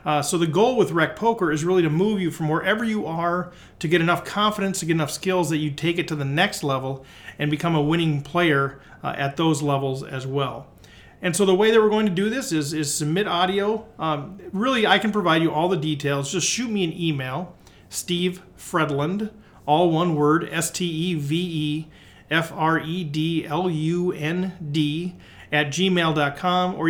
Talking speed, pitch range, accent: 205 wpm, 150-185 Hz, American